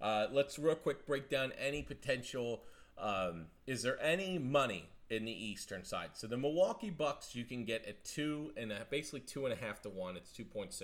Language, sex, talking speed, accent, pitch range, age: English, male, 190 wpm, American, 100-125 Hz, 30-49